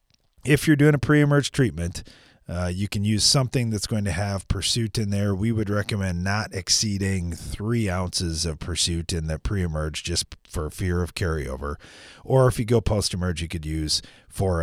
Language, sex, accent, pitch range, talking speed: English, male, American, 80-110 Hz, 180 wpm